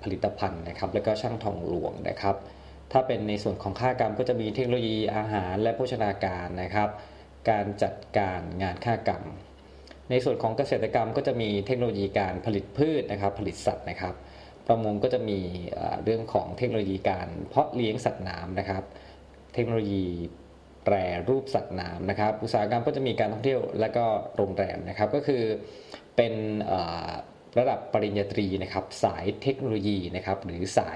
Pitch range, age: 95-115 Hz, 20-39